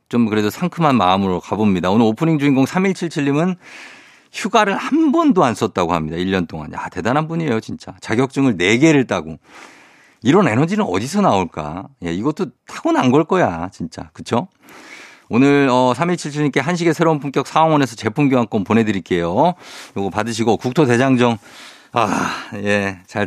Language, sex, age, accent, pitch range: Korean, male, 50-69, native, 110-160 Hz